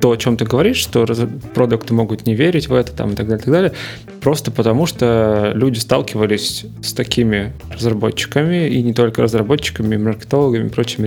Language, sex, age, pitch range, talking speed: Russian, male, 20-39, 110-130 Hz, 190 wpm